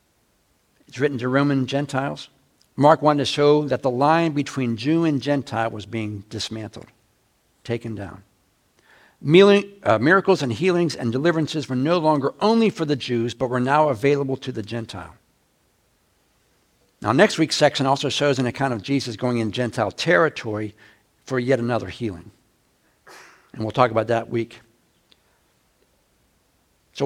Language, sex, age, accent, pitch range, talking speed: English, male, 60-79, American, 115-160 Hz, 145 wpm